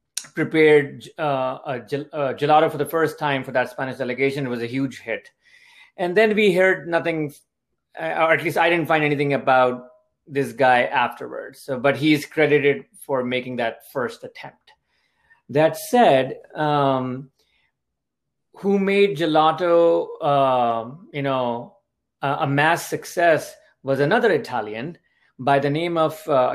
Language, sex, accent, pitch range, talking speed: English, male, Indian, 135-170 Hz, 145 wpm